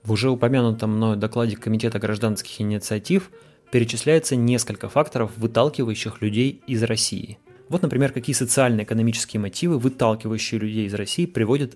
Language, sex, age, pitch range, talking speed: Russian, male, 20-39, 110-130 Hz, 130 wpm